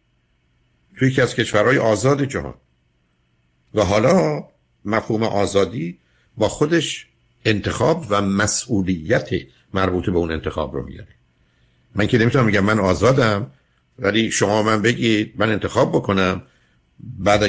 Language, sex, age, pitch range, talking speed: Persian, male, 60-79, 85-110 Hz, 120 wpm